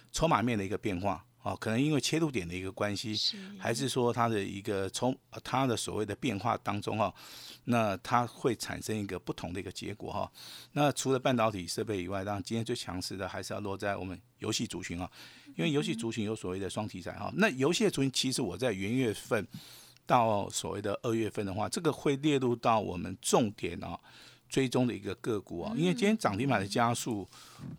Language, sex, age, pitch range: Chinese, male, 50-69, 100-135 Hz